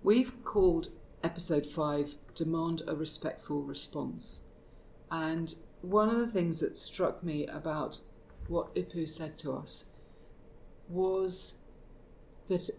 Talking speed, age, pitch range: 115 wpm, 40-59, 150-180 Hz